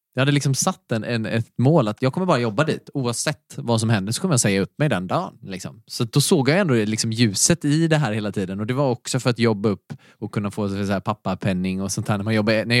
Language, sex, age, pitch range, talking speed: Swedish, male, 20-39, 105-130 Hz, 270 wpm